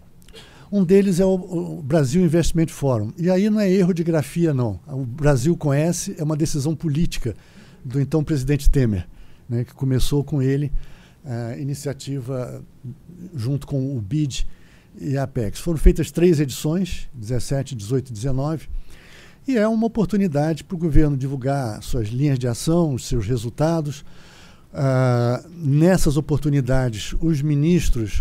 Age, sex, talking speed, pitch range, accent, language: 60-79, male, 145 wpm, 125-160 Hz, Brazilian, Portuguese